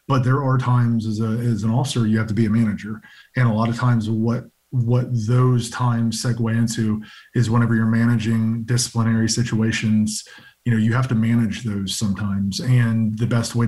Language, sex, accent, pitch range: English, male, American, 110-125 Hz